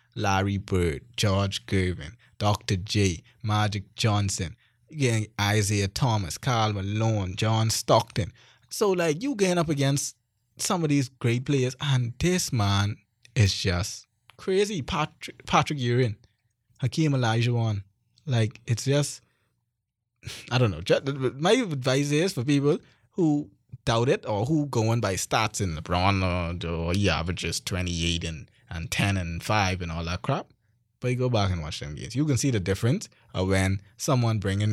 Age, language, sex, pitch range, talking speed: 20-39, English, male, 100-135 Hz, 155 wpm